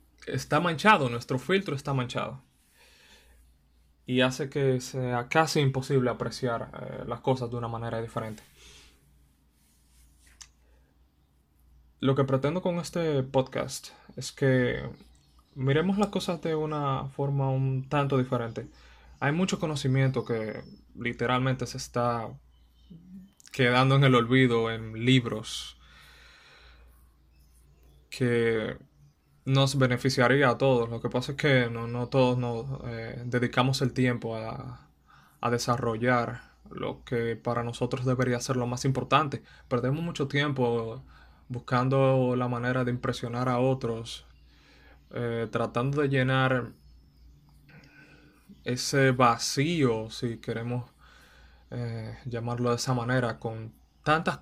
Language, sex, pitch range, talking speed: Spanish, male, 110-135 Hz, 115 wpm